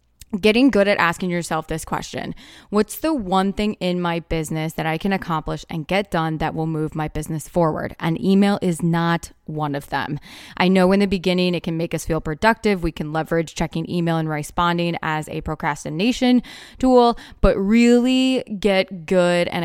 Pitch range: 160-195 Hz